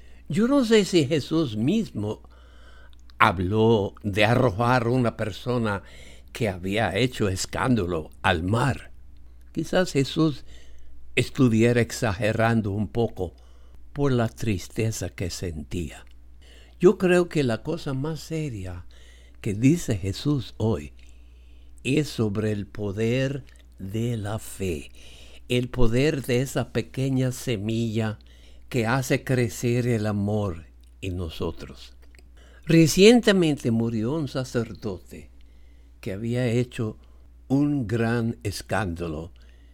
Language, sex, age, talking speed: English, male, 60-79, 105 wpm